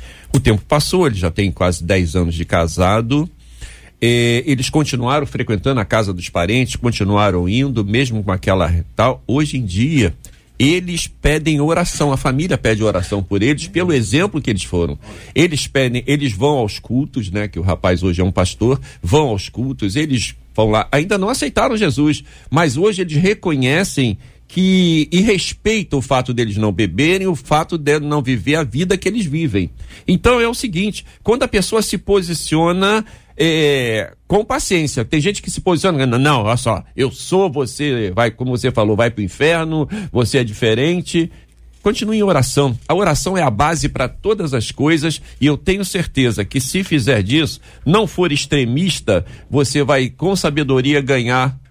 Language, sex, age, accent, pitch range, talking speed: Portuguese, male, 50-69, Brazilian, 110-165 Hz, 170 wpm